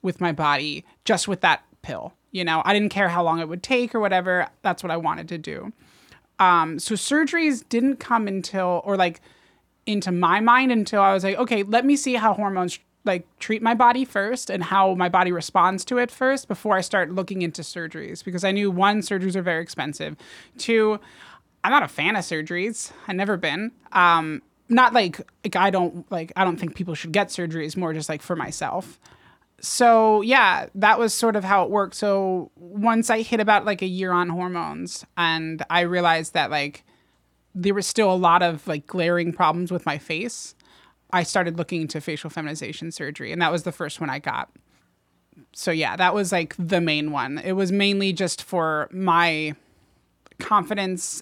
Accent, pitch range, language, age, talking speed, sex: American, 170-205 Hz, English, 20-39, 200 wpm, male